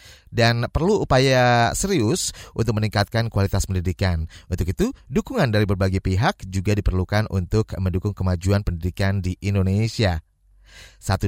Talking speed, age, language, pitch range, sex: 120 wpm, 30-49, Indonesian, 95-120 Hz, male